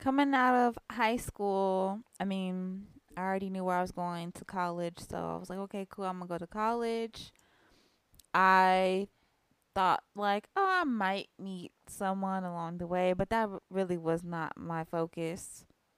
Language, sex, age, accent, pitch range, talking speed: English, female, 20-39, American, 175-205 Hz, 175 wpm